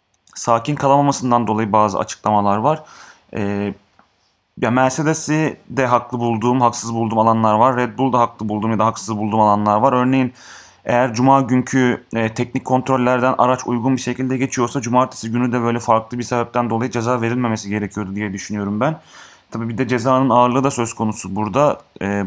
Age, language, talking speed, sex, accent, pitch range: 30-49, Turkish, 165 wpm, male, native, 110-130 Hz